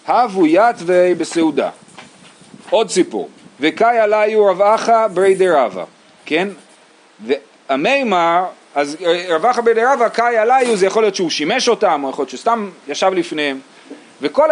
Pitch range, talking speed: 175-235 Hz, 135 wpm